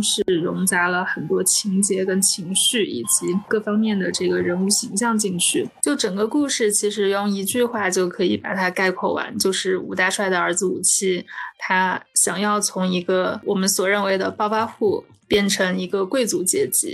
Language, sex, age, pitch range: Chinese, female, 20-39, 185-215 Hz